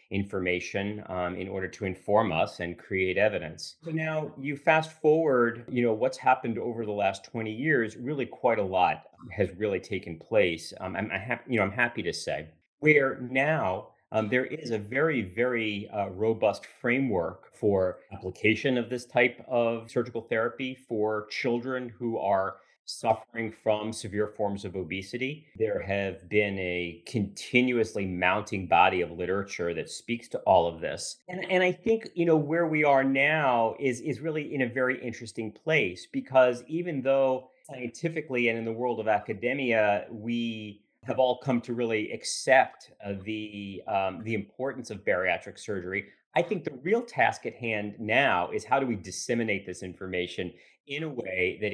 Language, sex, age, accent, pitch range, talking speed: English, male, 40-59, American, 100-130 Hz, 170 wpm